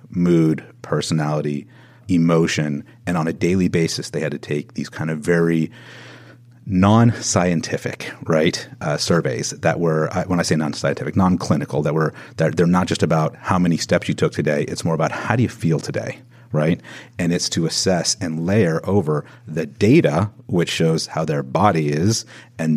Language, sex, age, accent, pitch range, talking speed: English, male, 40-59, American, 75-90 Hz, 170 wpm